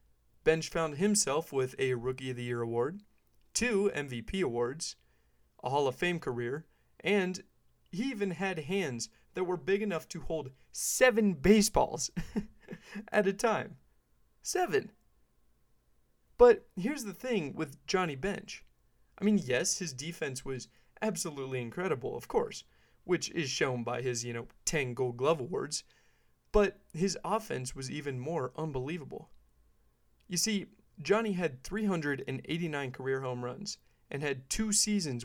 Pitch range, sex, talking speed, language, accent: 125-195 Hz, male, 140 wpm, English, American